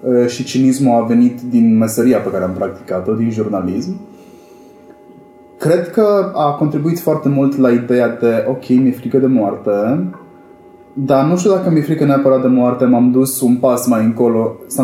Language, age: English, 20-39